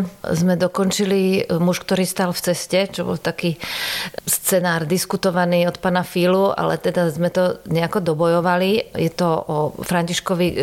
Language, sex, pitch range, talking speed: Czech, female, 170-200 Hz, 140 wpm